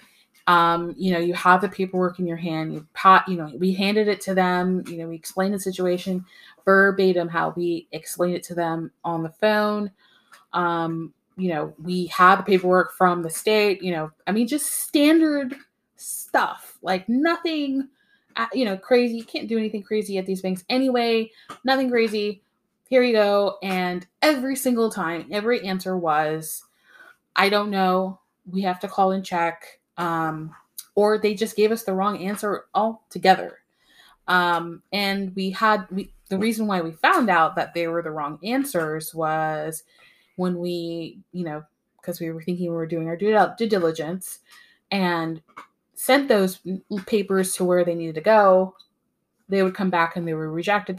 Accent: American